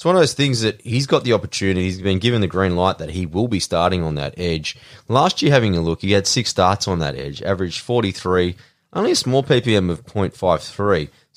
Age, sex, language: 20-39, male, English